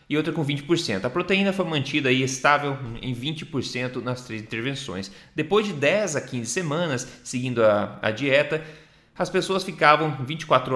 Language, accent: Portuguese, Brazilian